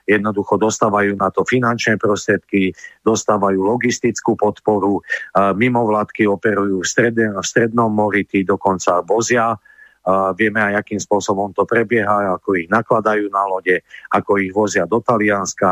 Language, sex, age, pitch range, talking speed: Slovak, male, 40-59, 100-115 Hz, 135 wpm